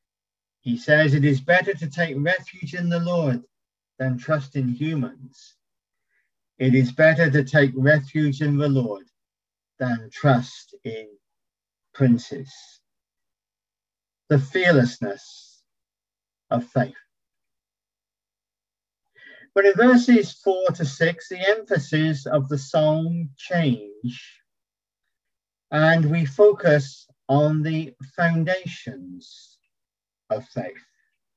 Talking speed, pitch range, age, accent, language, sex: 95 wpm, 130-170 Hz, 50-69, British, English, male